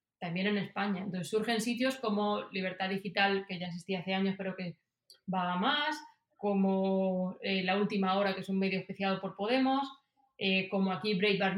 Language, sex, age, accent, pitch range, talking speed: Spanish, female, 30-49, Spanish, 195-230 Hz, 180 wpm